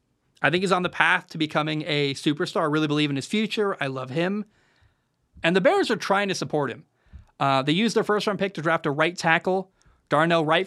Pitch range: 150-195 Hz